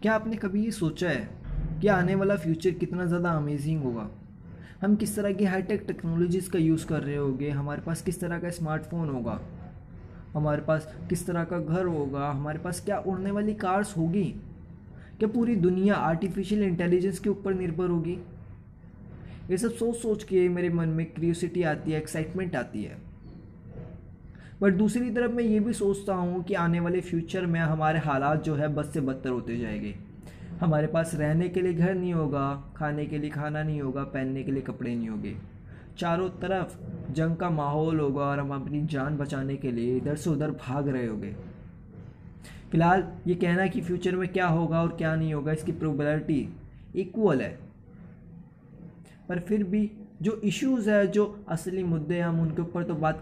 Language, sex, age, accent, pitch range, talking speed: Hindi, male, 20-39, native, 150-185 Hz, 180 wpm